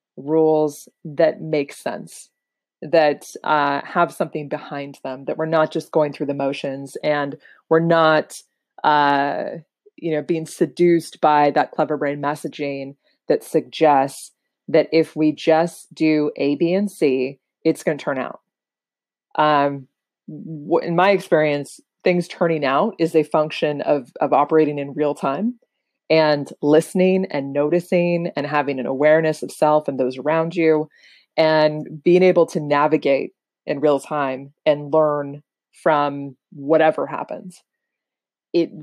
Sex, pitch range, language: female, 145-170 Hz, English